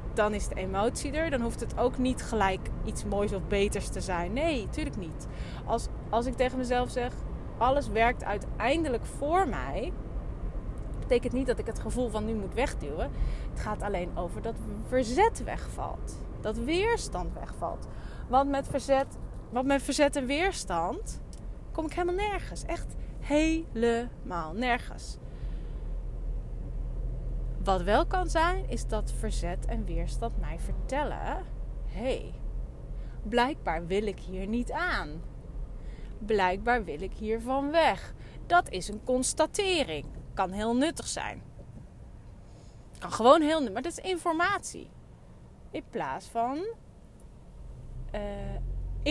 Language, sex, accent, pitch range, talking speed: Dutch, female, Dutch, 205-305 Hz, 130 wpm